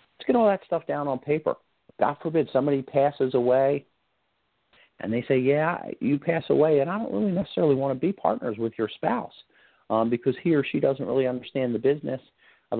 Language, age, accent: English, 50-69, American